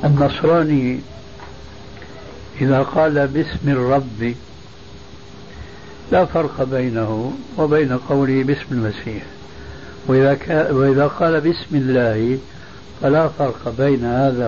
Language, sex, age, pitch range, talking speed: Arabic, male, 60-79, 120-150 Hz, 85 wpm